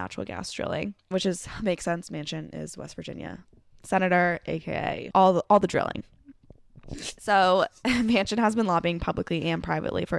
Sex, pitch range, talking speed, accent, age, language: female, 155-190 Hz, 160 wpm, American, 10-29, English